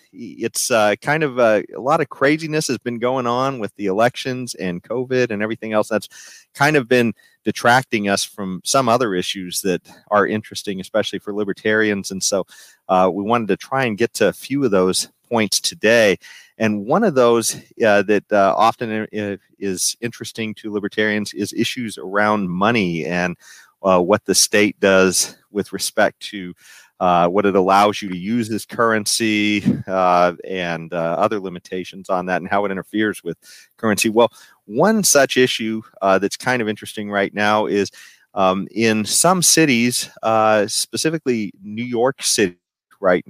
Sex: male